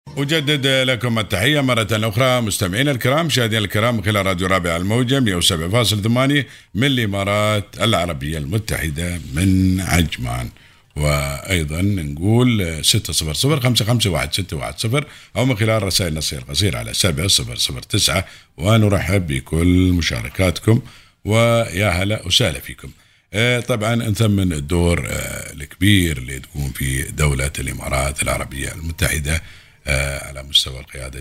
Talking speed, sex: 105 wpm, male